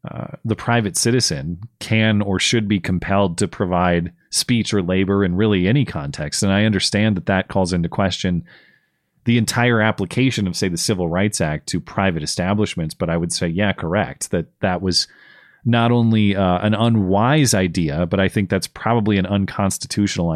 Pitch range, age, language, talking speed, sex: 90-110 Hz, 30-49, English, 175 wpm, male